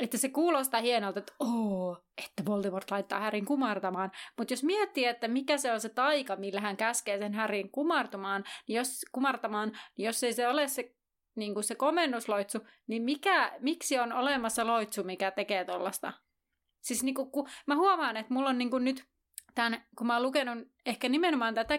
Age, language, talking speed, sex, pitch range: 30-49, Finnish, 180 wpm, female, 215-280 Hz